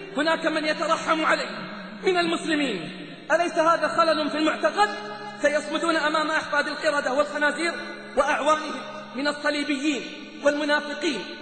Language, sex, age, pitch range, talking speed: Arabic, male, 30-49, 280-320 Hz, 105 wpm